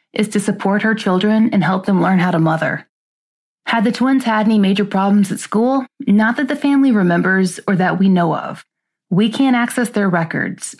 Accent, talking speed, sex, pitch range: American, 200 wpm, female, 180-220 Hz